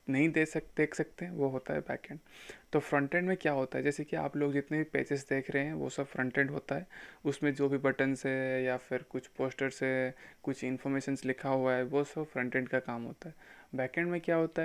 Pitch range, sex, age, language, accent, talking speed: 130-145 Hz, male, 20-39, Hindi, native, 255 wpm